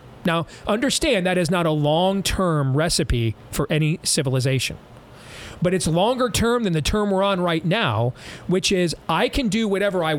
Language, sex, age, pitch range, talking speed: English, male, 40-59, 125-190 Hz, 175 wpm